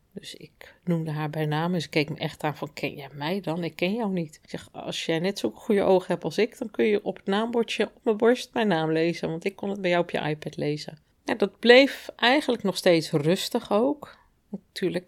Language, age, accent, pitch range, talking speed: Dutch, 40-59, Dutch, 160-195 Hz, 245 wpm